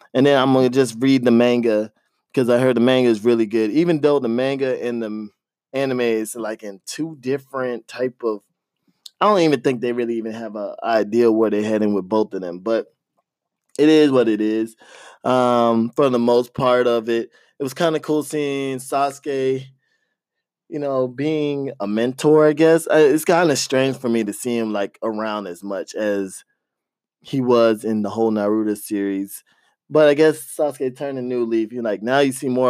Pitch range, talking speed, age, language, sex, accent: 115-140 Hz, 200 wpm, 20-39, English, male, American